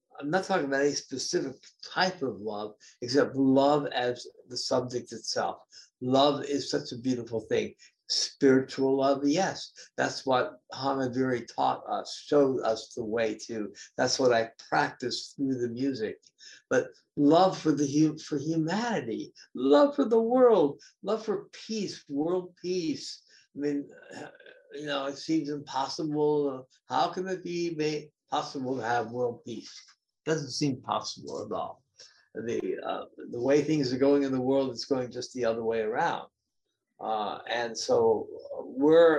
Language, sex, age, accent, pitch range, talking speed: English, male, 60-79, American, 130-185 Hz, 150 wpm